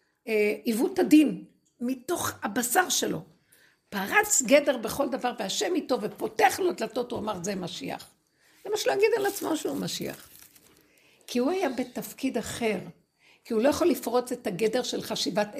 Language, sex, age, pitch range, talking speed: Hebrew, female, 60-79, 215-295 Hz, 155 wpm